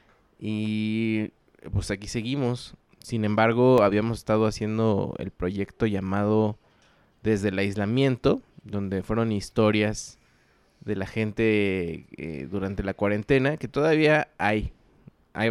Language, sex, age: Spanish, male, 20-39